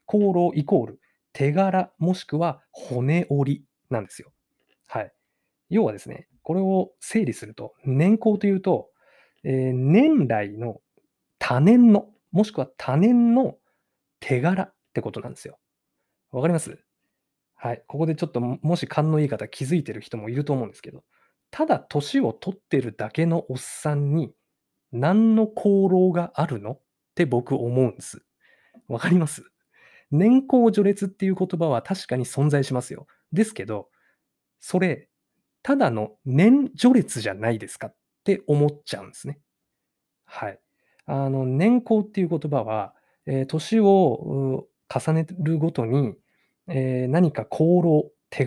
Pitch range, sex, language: 135-195 Hz, male, Japanese